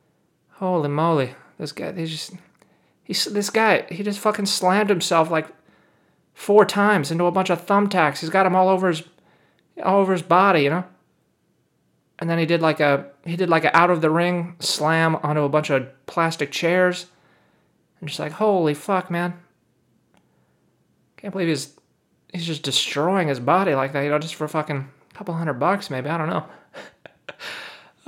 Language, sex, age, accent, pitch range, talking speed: English, male, 30-49, American, 140-180 Hz, 175 wpm